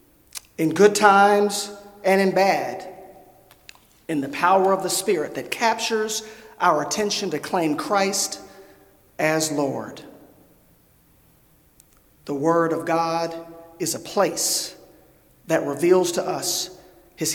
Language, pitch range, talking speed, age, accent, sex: English, 165-205 Hz, 115 wpm, 40-59, American, male